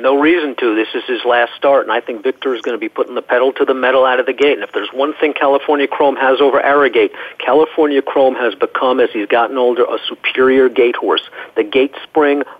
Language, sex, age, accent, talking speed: English, male, 50-69, American, 245 wpm